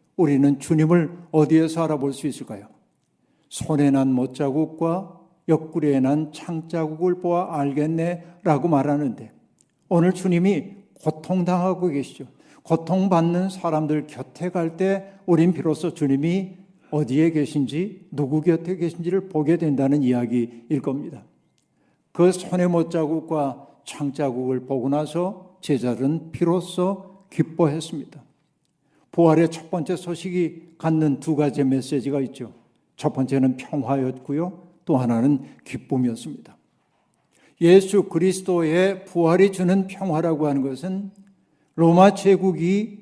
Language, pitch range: Korean, 145-185 Hz